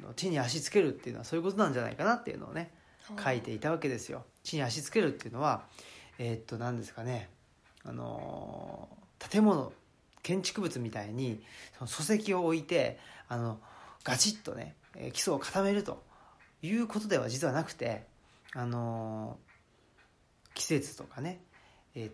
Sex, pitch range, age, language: male, 120-190 Hz, 40-59, Japanese